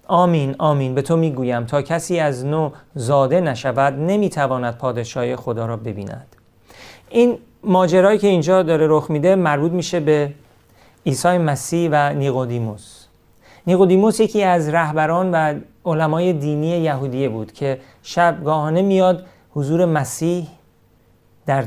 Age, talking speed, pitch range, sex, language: 40-59, 125 wpm, 135-180 Hz, male, Persian